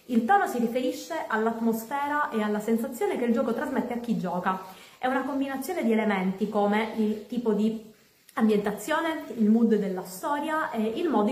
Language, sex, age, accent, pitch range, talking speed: Italian, female, 30-49, native, 205-250 Hz, 170 wpm